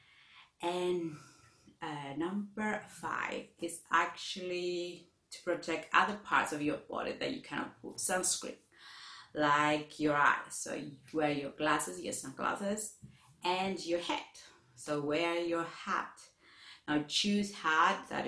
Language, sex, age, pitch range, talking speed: English, female, 30-49, 150-190 Hz, 125 wpm